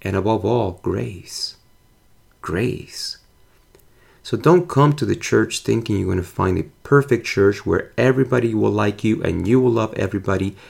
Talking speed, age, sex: 165 wpm, 30-49, male